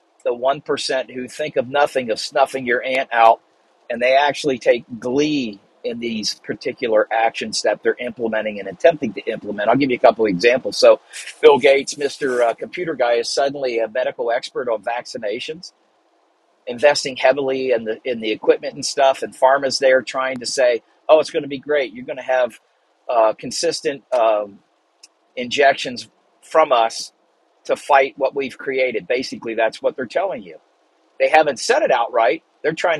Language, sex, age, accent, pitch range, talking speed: English, male, 50-69, American, 125-165 Hz, 175 wpm